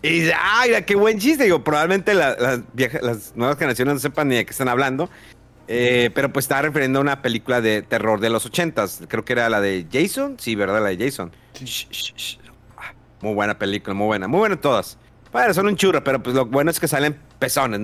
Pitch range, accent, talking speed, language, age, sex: 120-170 Hz, Mexican, 205 wpm, Spanish, 50-69, male